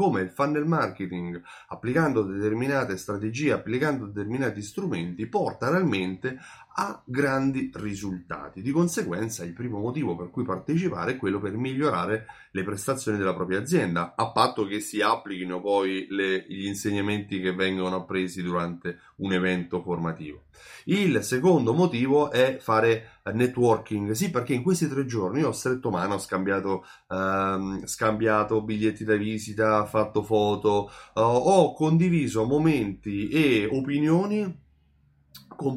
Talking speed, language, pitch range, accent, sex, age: 135 wpm, Italian, 100-140 Hz, native, male, 30-49